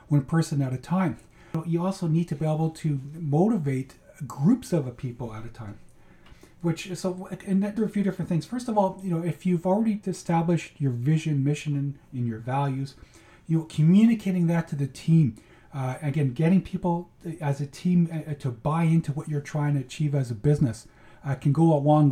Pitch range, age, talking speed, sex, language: 135-175 Hz, 40-59, 200 wpm, male, English